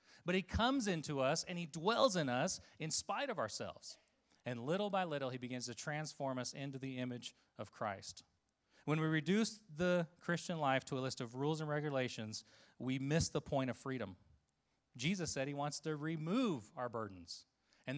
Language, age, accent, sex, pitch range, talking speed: English, 30-49, American, male, 120-160 Hz, 185 wpm